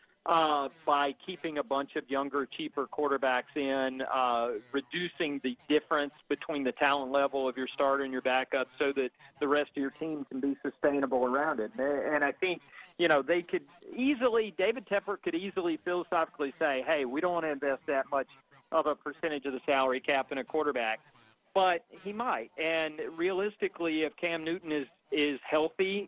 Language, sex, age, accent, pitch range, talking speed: English, male, 40-59, American, 135-170 Hz, 180 wpm